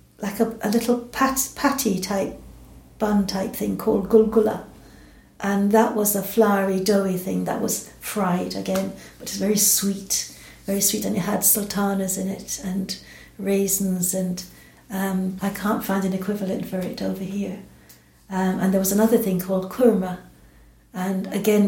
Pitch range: 190-210 Hz